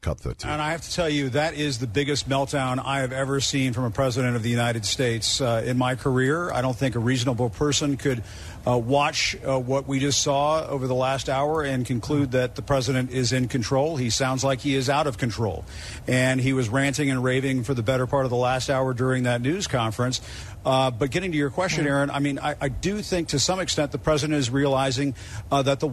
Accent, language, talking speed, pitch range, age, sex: American, English, 235 wpm, 100-140 Hz, 50-69, male